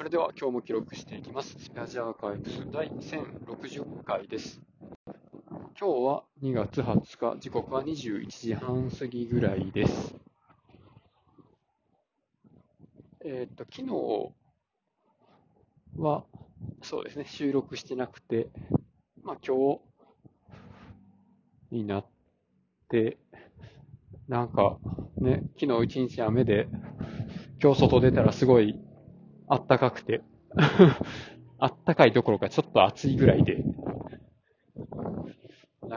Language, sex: Japanese, male